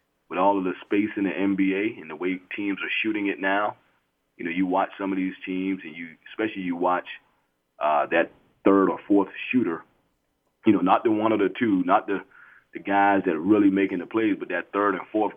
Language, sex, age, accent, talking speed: English, male, 30-49, American, 225 wpm